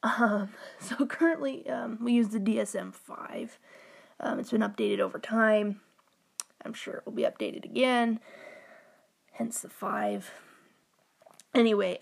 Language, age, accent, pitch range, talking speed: English, 20-39, American, 195-235 Hz, 125 wpm